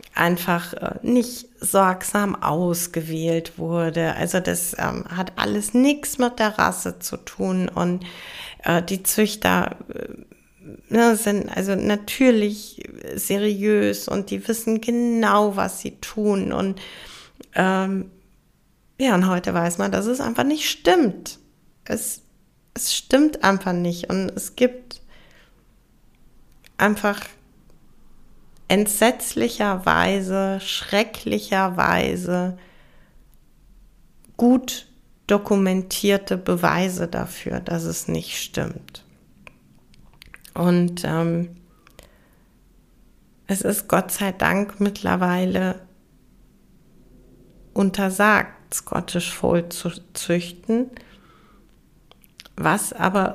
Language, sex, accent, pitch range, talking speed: German, female, German, 180-215 Hz, 90 wpm